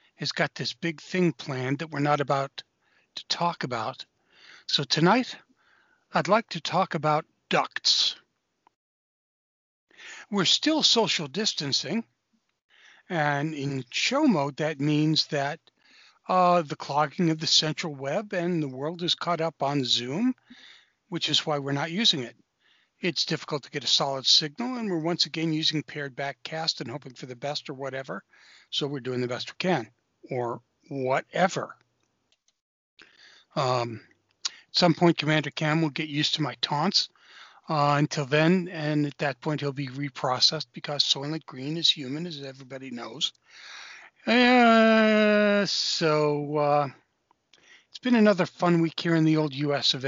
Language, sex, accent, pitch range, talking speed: English, male, American, 140-170 Hz, 155 wpm